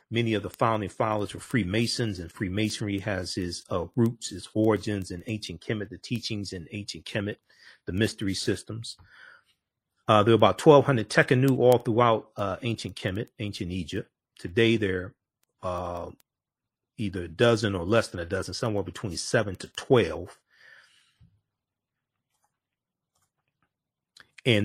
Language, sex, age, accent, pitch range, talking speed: English, male, 40-59, American, 95-115 Hz, 135 wpm